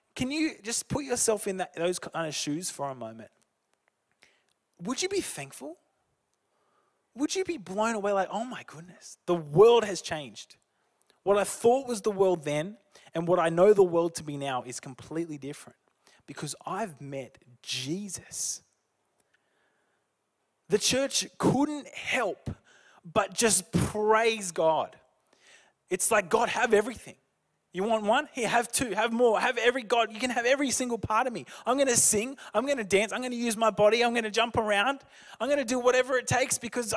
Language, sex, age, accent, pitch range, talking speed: English, male, 20-39, Australian, 185-250 Hz, 180 wpm